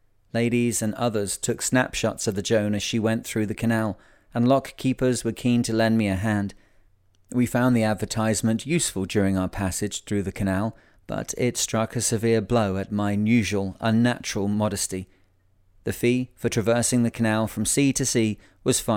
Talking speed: 180 wpm